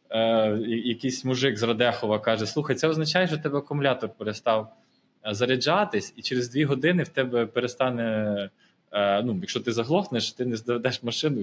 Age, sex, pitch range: 20-39, male, 115-155 Hz